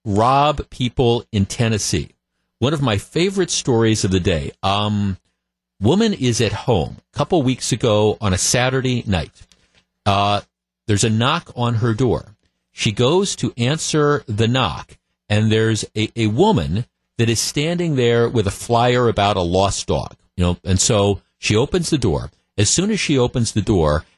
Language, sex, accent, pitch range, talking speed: English, male, American, 105-140 Hz, 170 wpm